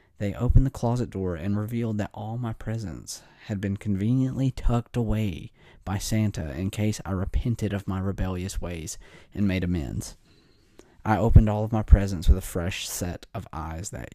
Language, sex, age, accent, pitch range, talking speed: English, male, 30-49, American, 90-110 Hz, 180 wpm